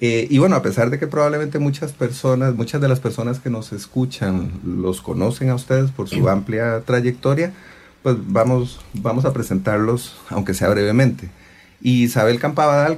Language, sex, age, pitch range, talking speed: English, male, 40-59, 95-130 Hz, 160 wpm